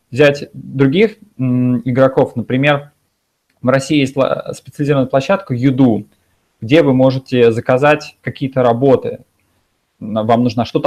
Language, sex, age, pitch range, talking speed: Russian, male, 20-39, 120-145 Hz, 105 wpm